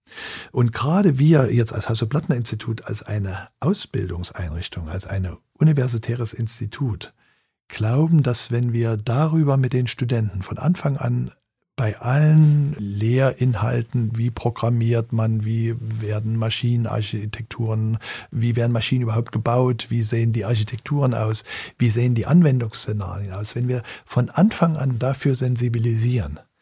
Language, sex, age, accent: German, male, 50-69, German